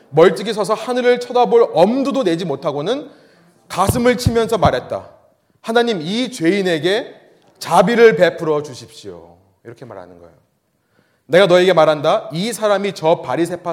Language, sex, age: Korean, male, 30-49